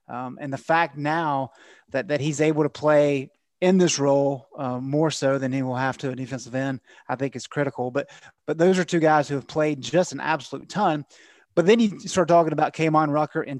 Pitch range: 135-160 Hz